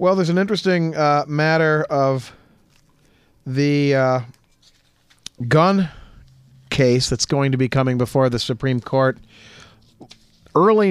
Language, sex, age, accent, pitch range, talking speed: English, male, 40-59, American, 125-150 Hz, 115 wpm